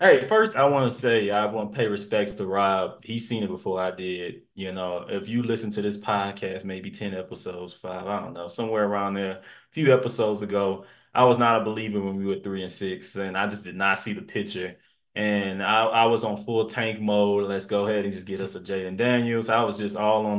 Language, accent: English, American